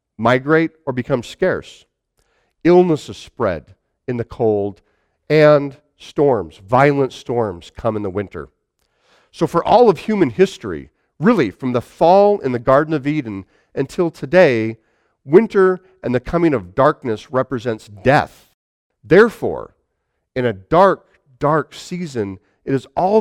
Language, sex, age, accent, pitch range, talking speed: English, male, 50-69, American, 115-180 Hz, 130 wpm